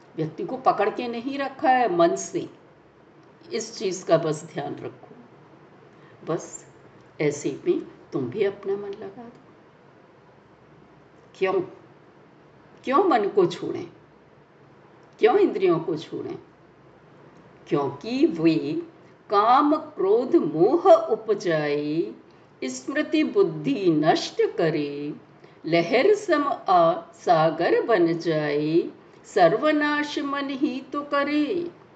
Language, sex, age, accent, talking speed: Hindi, female, 60-79, native, 100 wpm